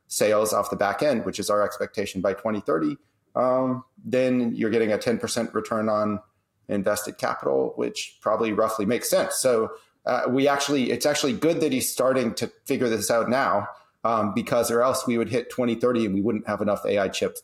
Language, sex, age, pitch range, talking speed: English, male, 30-49, 105-130 Hz, 195 wpm